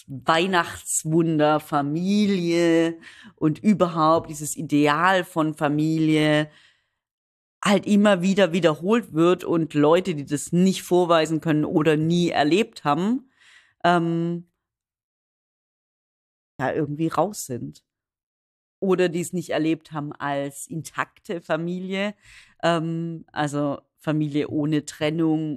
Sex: female